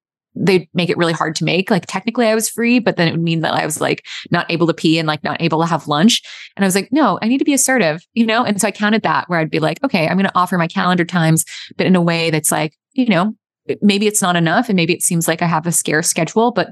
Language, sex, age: English, female, 20-39